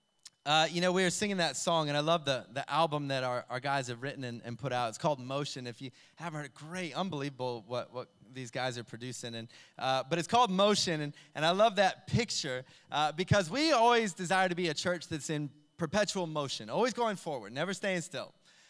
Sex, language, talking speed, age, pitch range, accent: male, English, 230 wpm, 20-39, 150-210 Hz, American